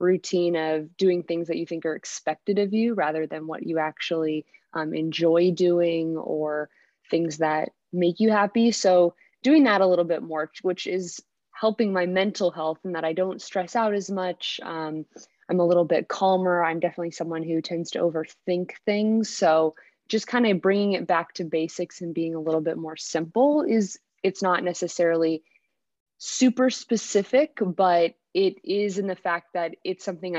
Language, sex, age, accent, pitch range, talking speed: English, female, 20-39, American, 165-195 Hz, 180 wpm